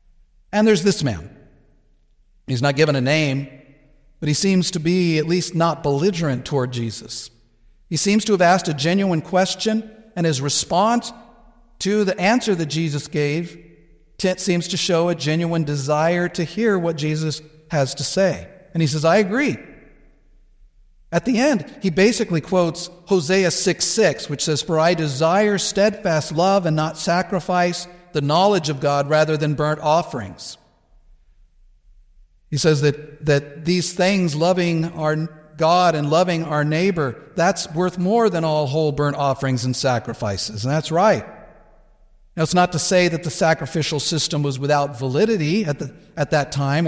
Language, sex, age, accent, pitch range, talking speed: English, male, 50-69, American, 145-180 Hz, 160 wpm